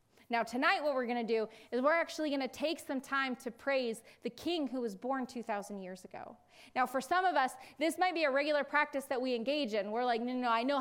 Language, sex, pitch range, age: English, female, 240-305 Hz, 20-39